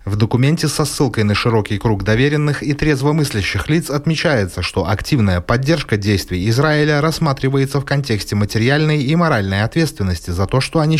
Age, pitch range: 30-49, 105-150 Hz